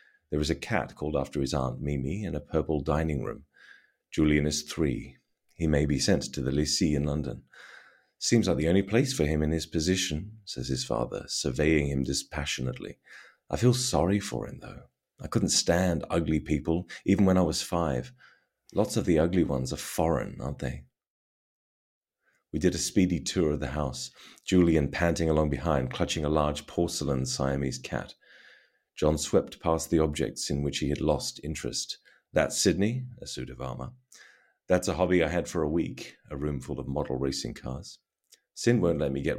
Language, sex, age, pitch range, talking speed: English, male, 30-49, 70-85 Hz, 185 wpm